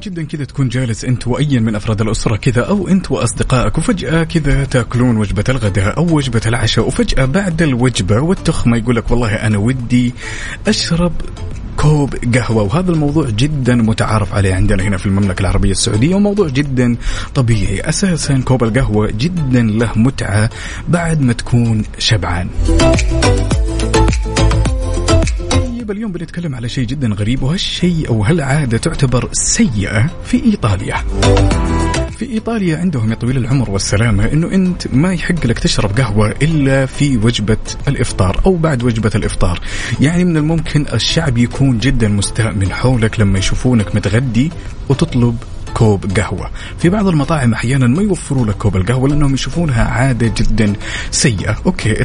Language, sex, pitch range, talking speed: Arabic, male, 105-140 Hz, 140 wpm